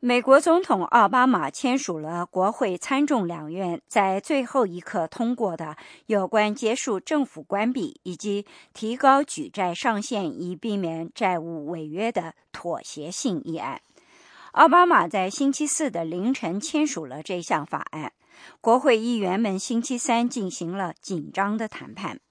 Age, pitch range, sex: 50-69, 185-260 Hz, male